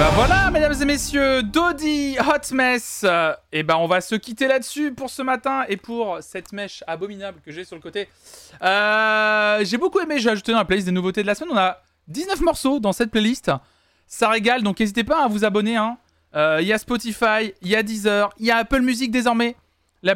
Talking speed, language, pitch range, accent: 225 wpm, French, 185-245 Hz, French